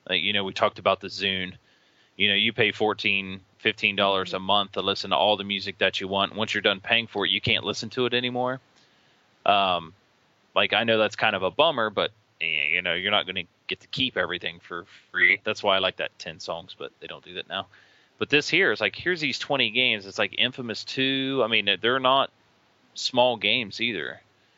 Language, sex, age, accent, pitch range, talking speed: English, male, 20-39, American, 95-125 Hz, 225 wpm